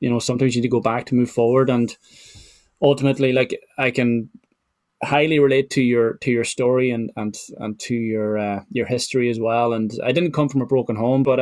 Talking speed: 220 wpm